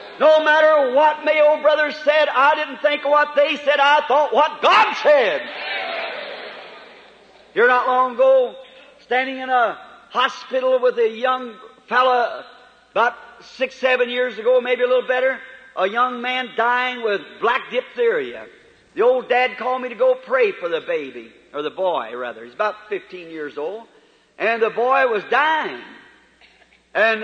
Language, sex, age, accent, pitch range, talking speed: English, male, 50-69, American, 225-295 Hz, 160 wpm